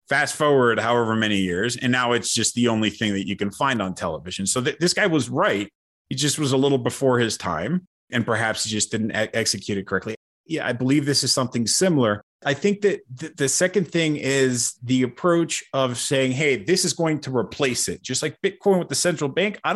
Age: 30-49